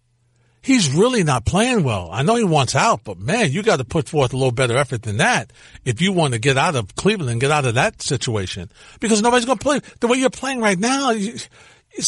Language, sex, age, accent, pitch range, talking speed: English, male, 50-69, American, 120-165 Hz, 245 wpm